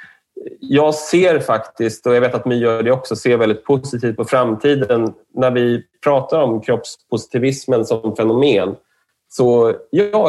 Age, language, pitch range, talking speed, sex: 30-49, English, 105-135 Hz, 140 wpm, male